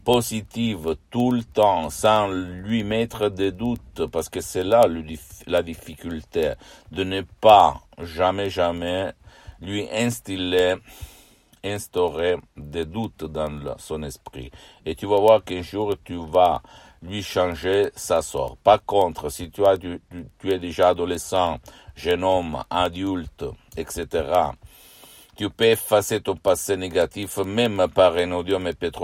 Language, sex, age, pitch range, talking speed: Italian, male, 60-79, 85-100 Hz, 140 wpm